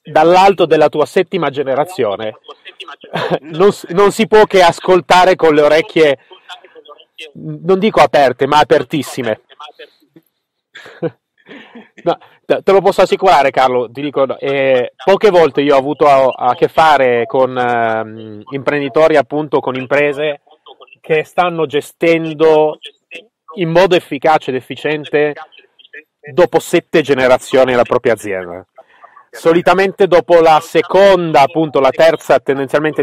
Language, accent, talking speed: Italian, native, 115 wpm